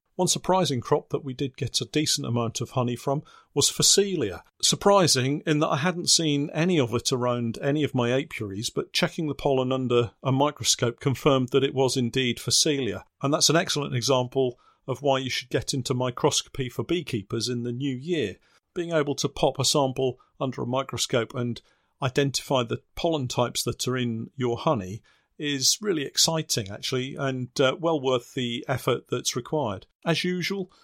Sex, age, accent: male, 50-69, British